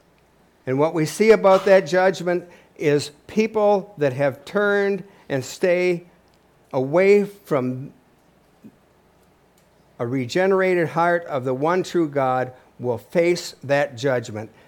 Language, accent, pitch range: English, American, 120-165 Hz